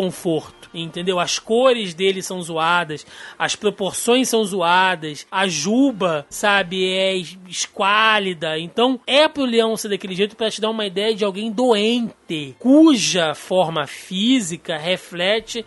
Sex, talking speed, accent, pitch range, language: male, 135 wpm, Brazilian, 165-220 Hz, Portuguese